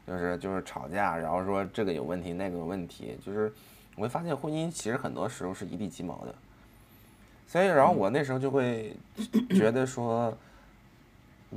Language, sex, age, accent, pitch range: Chinese, male, 20-39, native, 90-115 Hz